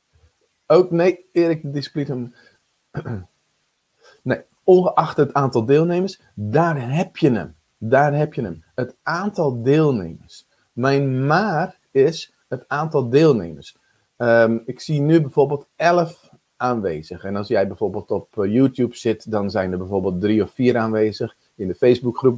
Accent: Dutch